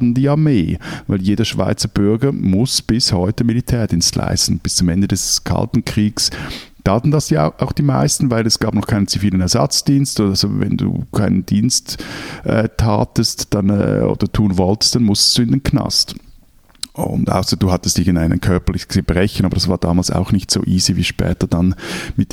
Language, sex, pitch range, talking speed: German, male, 95-125 Hz, 190 wpm